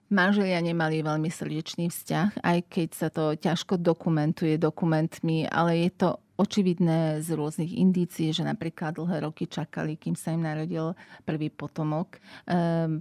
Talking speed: 145 wpm